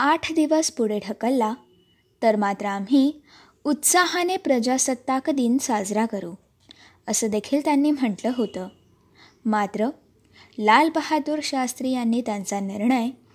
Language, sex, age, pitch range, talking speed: Marathi, female, 20-39, 215-290 Hz, 110 wpm